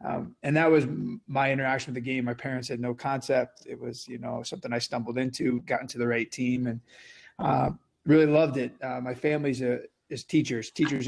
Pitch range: 120-135 Hz